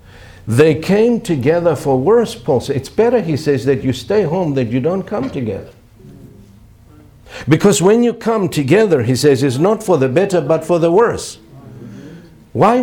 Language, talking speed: English, 170 wpm